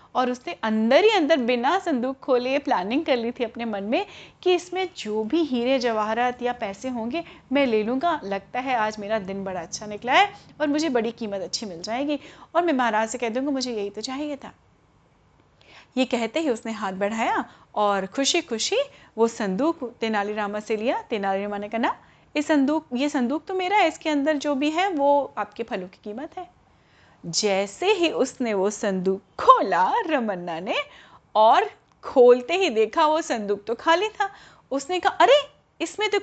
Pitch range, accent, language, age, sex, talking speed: 225-330 Hz, native, Hindi, 30-49, female, 185 wpm